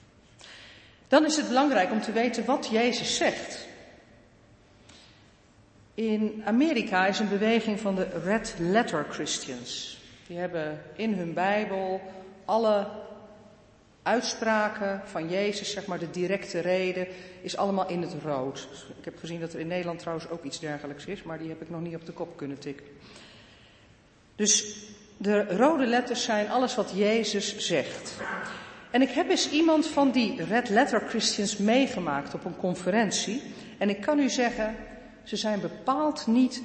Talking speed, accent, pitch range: 155 wpm, Dutch, 170-235 Hz